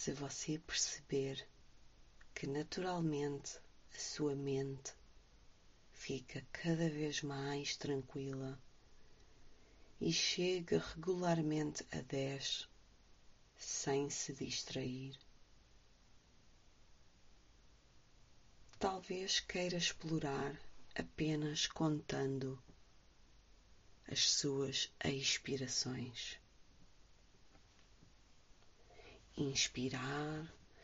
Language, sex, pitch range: English, female, 130-150 Hz